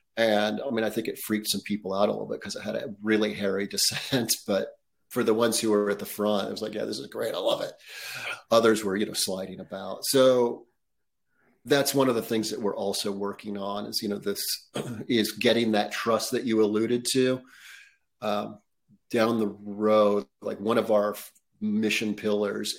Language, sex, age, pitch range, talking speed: English, male, 40-59, 105-110 Hz, 205 wpm